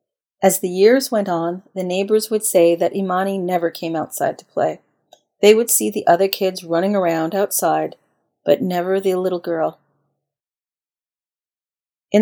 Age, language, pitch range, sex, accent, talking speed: 40-59, English, 160-195 Hz, female, American, 150 wpm